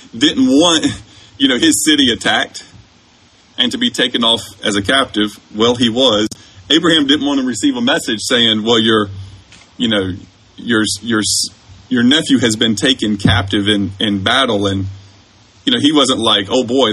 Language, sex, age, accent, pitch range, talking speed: English, male, 30-49, American, 100-130 Hz, 175 wpm